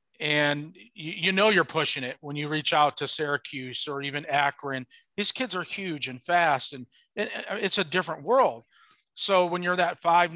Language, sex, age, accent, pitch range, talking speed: English, male, 40-59, American, 140-175 Hz, 190 wpm